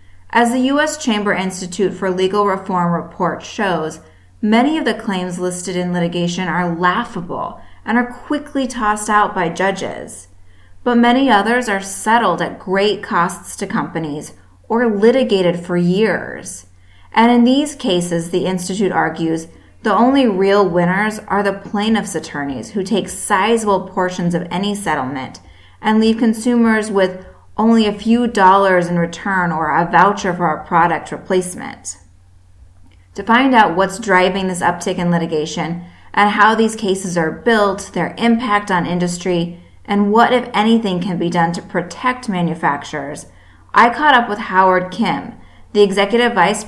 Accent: American